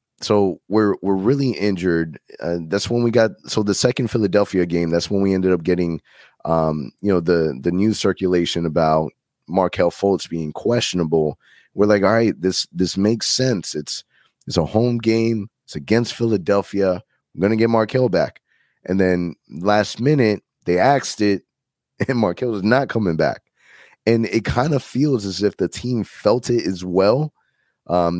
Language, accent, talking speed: English, American, 170 wpm